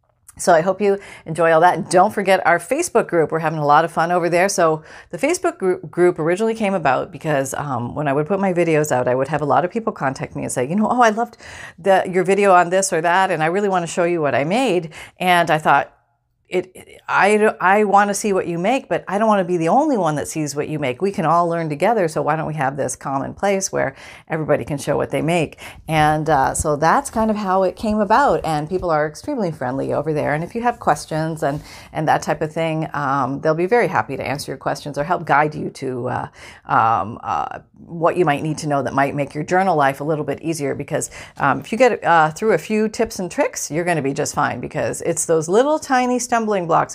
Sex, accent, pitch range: female, American, 155-215 Hz